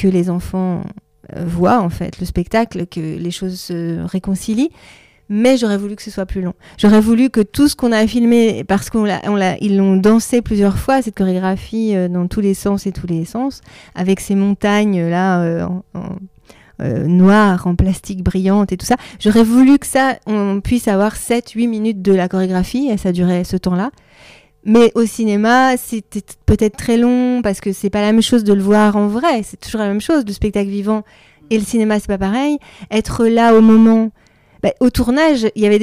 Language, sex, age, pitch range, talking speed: French, female, 30-49, 195-235 Hz, 215 wpm